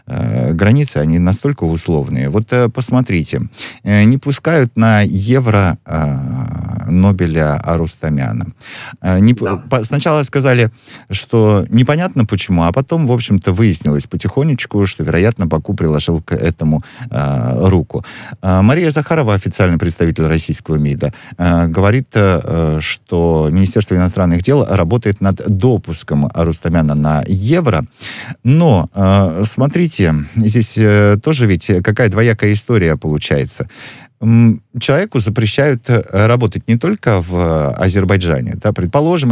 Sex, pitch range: male, 85-120 Hz